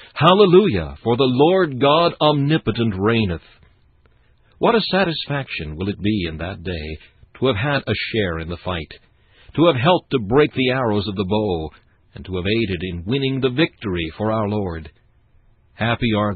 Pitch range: 90-120 Hz